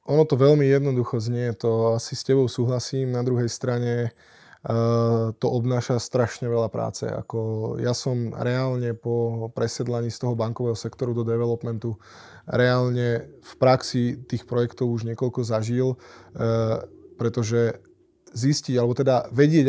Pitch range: 115-130 Hz